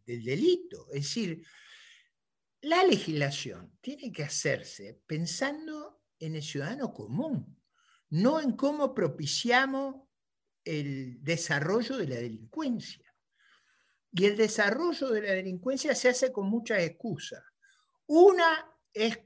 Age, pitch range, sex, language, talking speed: 50-69, 165-270 Hz, male, Spanish, 110 wpm